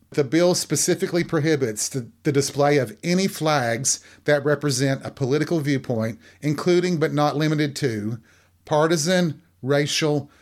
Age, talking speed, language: 40-59, 120 wpm, English